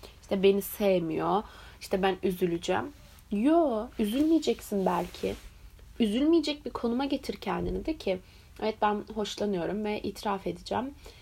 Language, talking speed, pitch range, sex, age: Turkish, 120 wpm, 185-230 Hz, female, 30-49